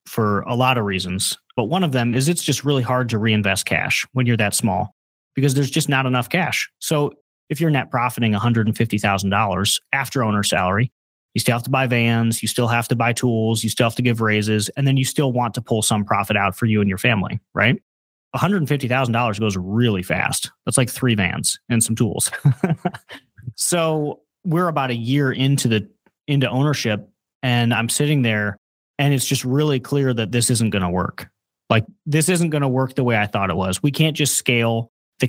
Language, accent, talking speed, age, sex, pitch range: English, American, 205 wpm, 30-49, male, 110-140 Hz